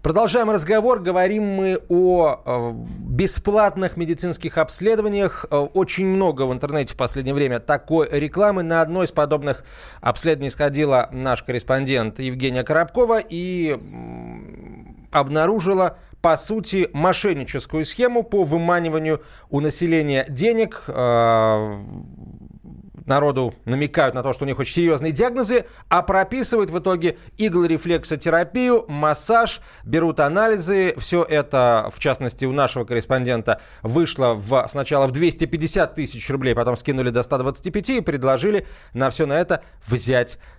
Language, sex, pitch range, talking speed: Russian, male, 125-180 Hz, 120 wpm